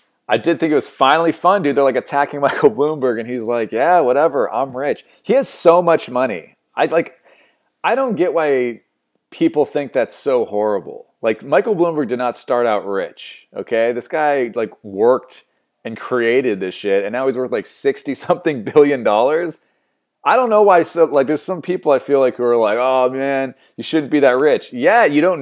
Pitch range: 125-185 Hz